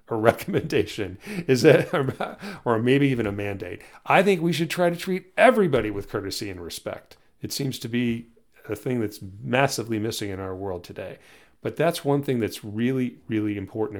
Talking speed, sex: 180 wpm, male